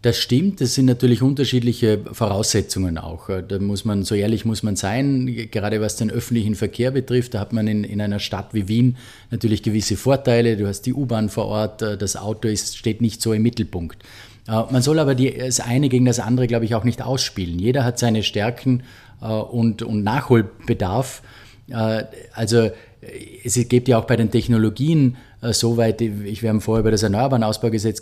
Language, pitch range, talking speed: German, 105-125 Hz, 185 wpm